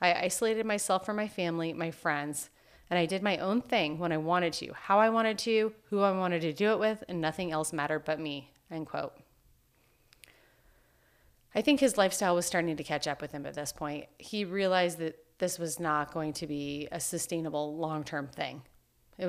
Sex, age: female, 30-49